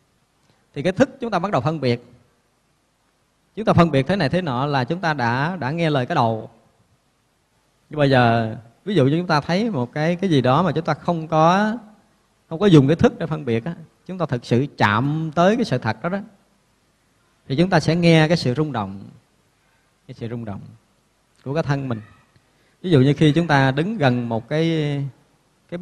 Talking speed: 215 wpm